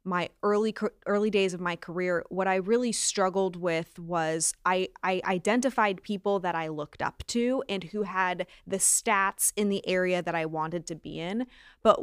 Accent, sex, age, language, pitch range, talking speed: American, female, 20-39, English, 180-215 Hz, 185 wpm